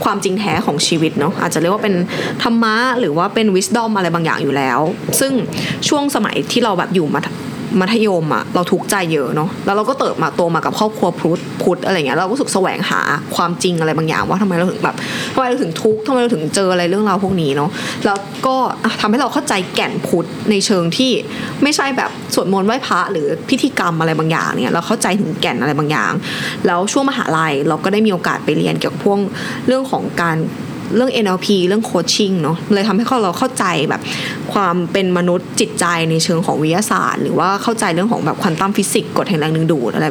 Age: 20-39